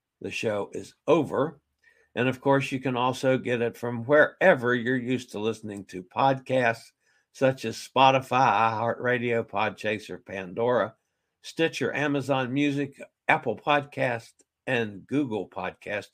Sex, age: male, 60-79